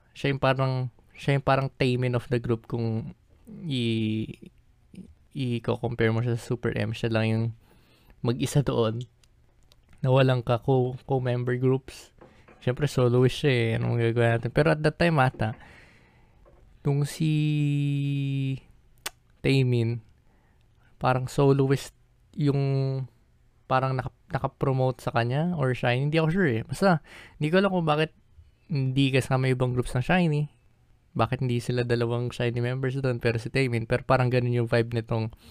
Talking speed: 150 wpm